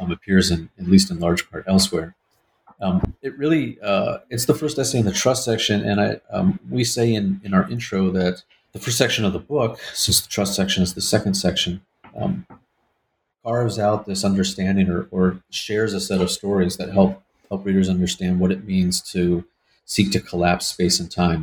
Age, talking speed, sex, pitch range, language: 40-59, 200 wpm, male, 90-105 Hz, English